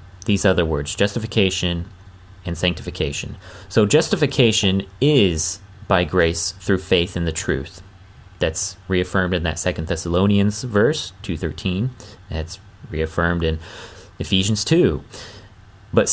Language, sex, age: English, male, 30-49